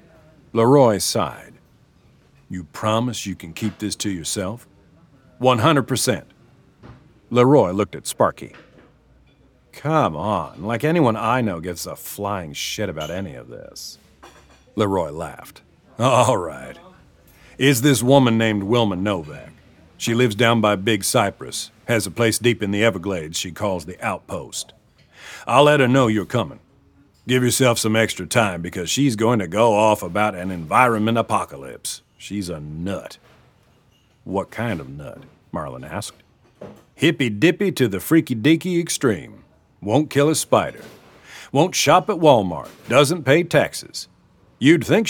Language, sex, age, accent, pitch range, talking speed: English, male, 50-69, American, 100-130 Hz, 145 wpm